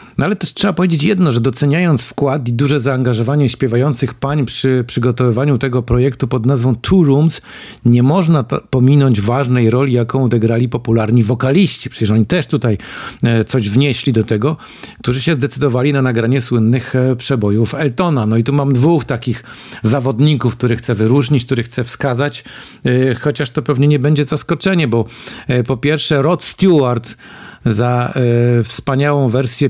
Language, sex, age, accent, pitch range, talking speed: Polish, male, 50-69, native, 115-140 Hz, 150 wpm